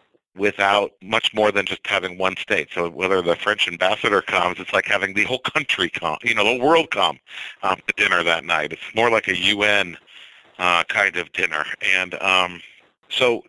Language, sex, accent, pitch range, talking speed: English, male, American, 85-105 Hz, 190 wpm